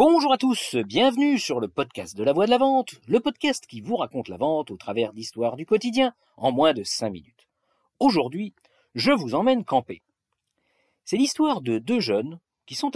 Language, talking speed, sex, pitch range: French, 195 wpm, male, 120-200 Hz